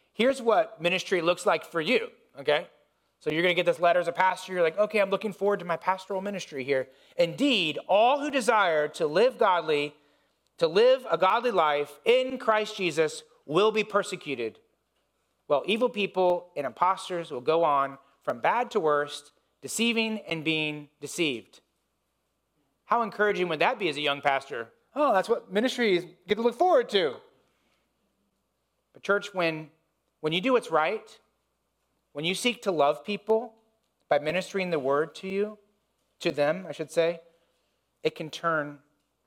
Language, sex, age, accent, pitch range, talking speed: English, male, 30-49, American, 155-210 Hz, 165 wpm